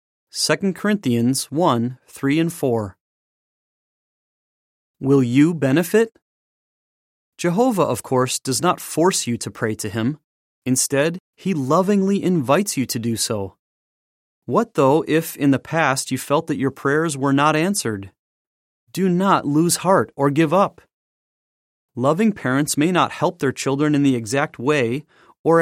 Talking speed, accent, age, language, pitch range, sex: 145 wpm, American, 30-49, English, 125-175 Hz, male